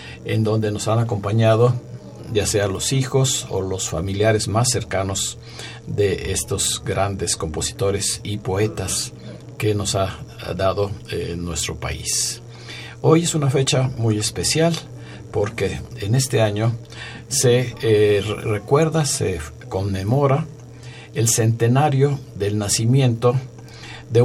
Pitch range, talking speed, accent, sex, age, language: 100-120 Hz, 115 wpm, Mexican, male, 50-69, Spanish